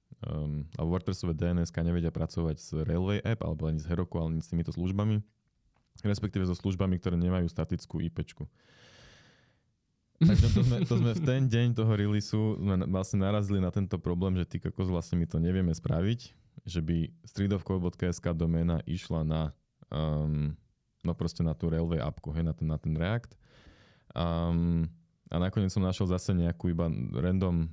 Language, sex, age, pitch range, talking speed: Slovak, male, 20-39, 80-100 Hz, 155 wpm